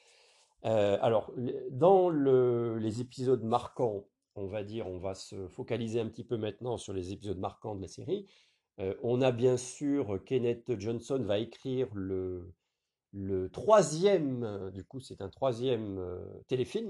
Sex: male